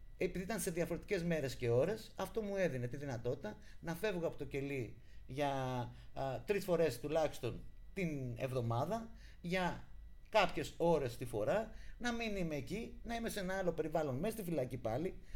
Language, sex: Greek, male